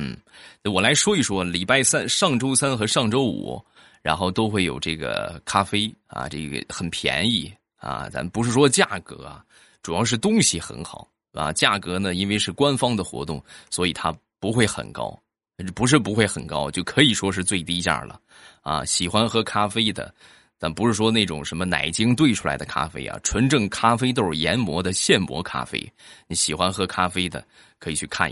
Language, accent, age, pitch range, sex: Chinese, native, 20-39, 85-115 Hz, male